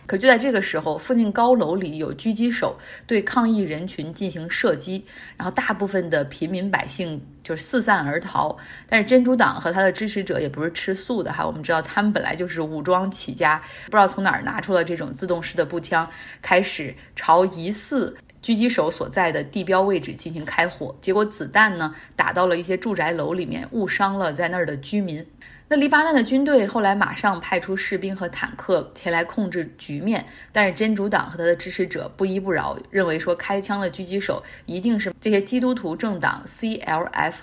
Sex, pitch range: female, 165-210 Hz